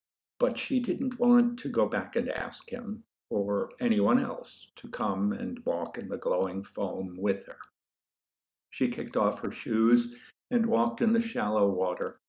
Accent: American